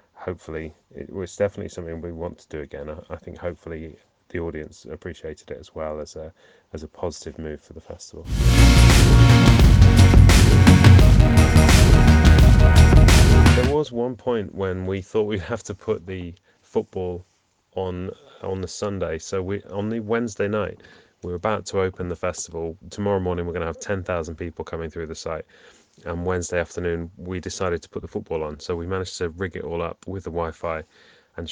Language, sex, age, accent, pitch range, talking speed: English, male, 30-49, British, 85-100 Hz, 175 wpm